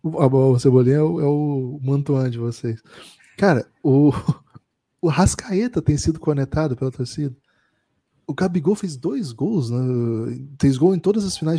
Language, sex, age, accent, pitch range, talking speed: Portuguese, male, 20-39, Brazilian, 135-185 Hz, 150 wpm